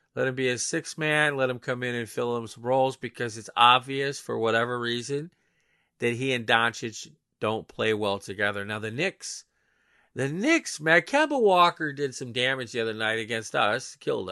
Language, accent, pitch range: English, American, 115-145 Hz